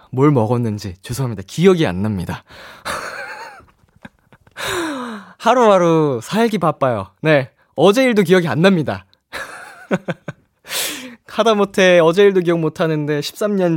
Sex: male